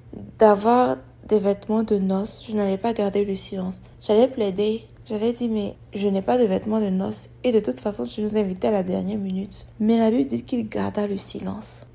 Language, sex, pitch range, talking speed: French, female, 180-220 Hz, 210 wpm